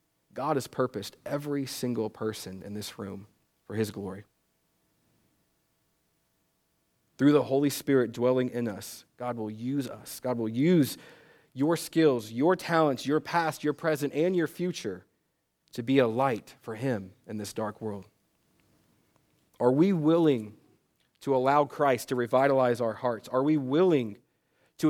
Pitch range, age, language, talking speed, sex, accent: 110-145 Hz, 40-59, English, 145 wpm, male, American